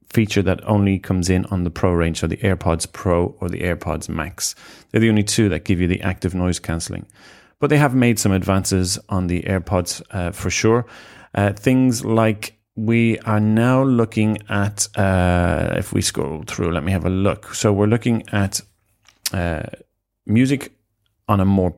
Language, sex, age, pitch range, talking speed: English, male, 30-49, 90-110 Hz, 185 wpm